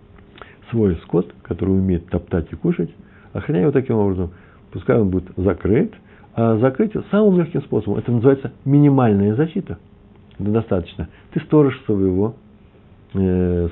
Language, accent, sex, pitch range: Russian, native, male, 95-115 Hz